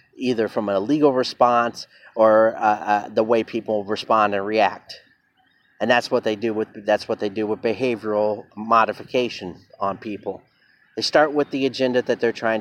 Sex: male